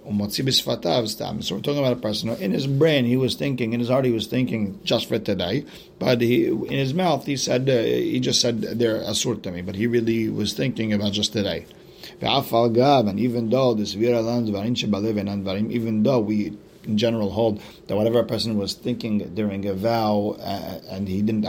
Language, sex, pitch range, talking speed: English, male, 95-115 Hz, 185 wpm